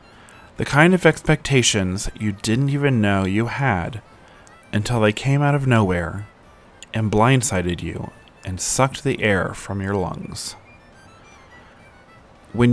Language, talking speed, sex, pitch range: English, 125 wpm, male, 95-125 Hz